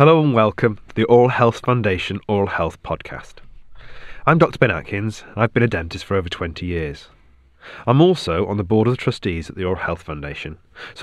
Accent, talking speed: British, 200 wpm